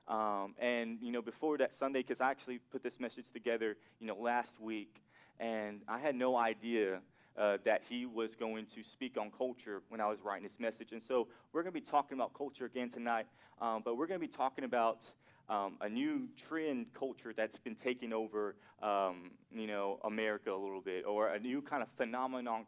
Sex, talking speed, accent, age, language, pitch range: male, 210 wpm, American, 30-49, English, 110-135 Hz